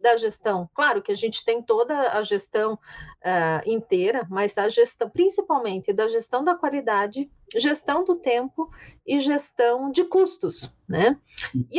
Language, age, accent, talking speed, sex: Portuguese, 40-59, Brazilian, 145 wpm, female